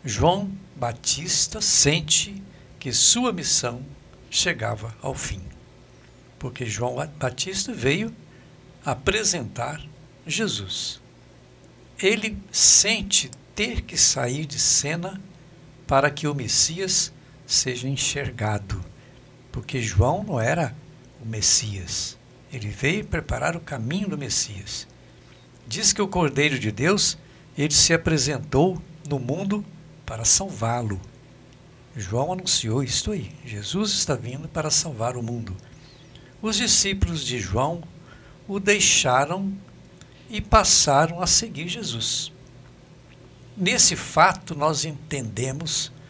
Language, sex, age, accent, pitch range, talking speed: Portuguese, male, 60-79, Brazilian, 125-170 Hz, 105 wpm